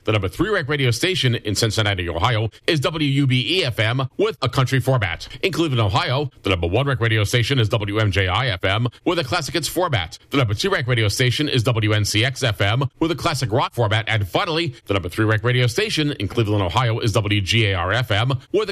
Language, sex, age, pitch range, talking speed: English, male, 40-59, 110-140 Hz, 200 wpm